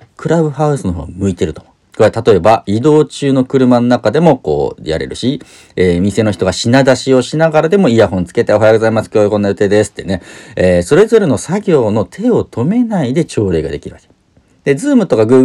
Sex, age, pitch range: male, 40-59, 90-130 Hz